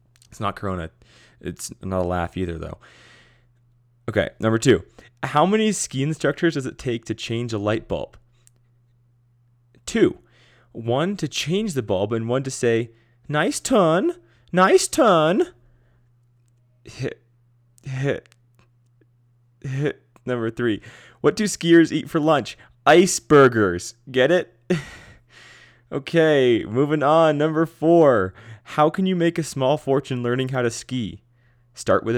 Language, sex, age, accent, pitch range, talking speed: English, male, 20-39, American, 110-130 Hz, 125 wpm